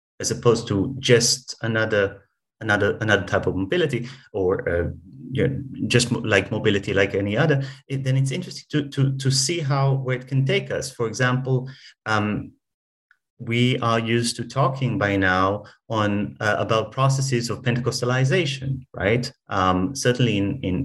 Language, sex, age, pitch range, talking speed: English, male, 30-49, 105-135 Hz, 160 wpm